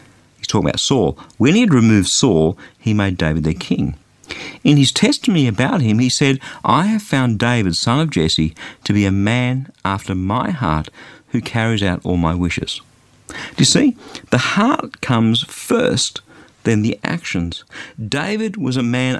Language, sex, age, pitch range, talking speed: English, male, 50-69, 105-160 Hz, 170 wpm